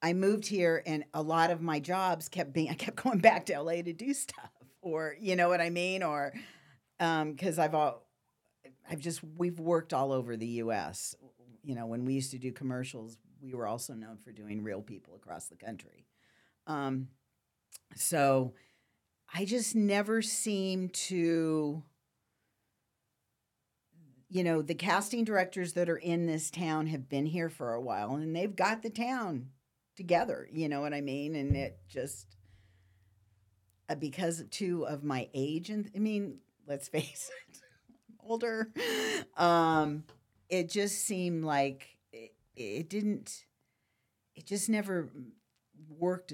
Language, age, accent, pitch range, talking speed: English, 50-69, American, 130-175 Hz, 160 wpm